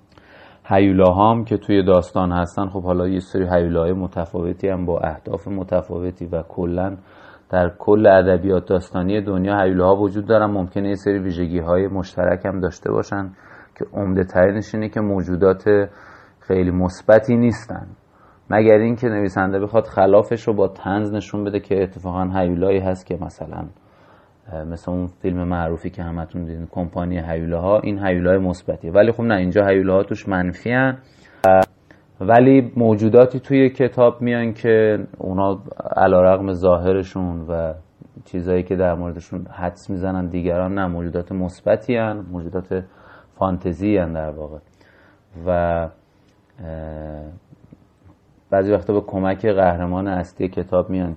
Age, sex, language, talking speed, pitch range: 30-49, male, Persian, 135 wpm, 90-105 Hz